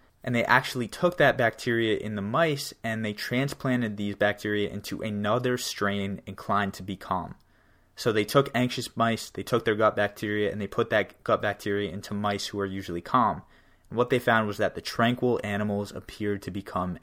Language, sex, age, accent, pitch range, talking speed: English, male, 20-39, American, 100-115 Hz, 195 wpm